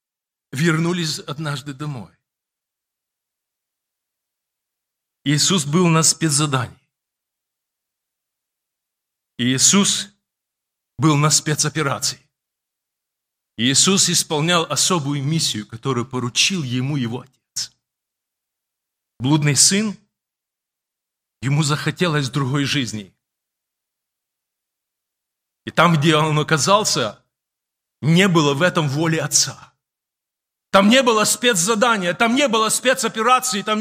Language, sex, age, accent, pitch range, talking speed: Russian, male, 40-59, native, 145-215 Hz, 80 wpm